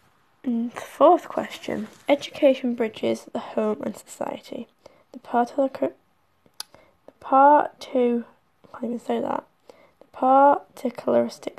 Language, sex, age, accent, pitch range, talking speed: English, female, 10-29, British, 230-290 Hz, 105 wpm